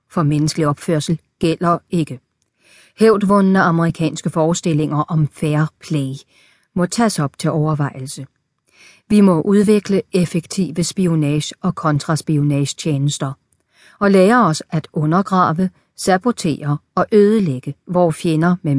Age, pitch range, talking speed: 40-59, 150-195 Hz, 110 wpm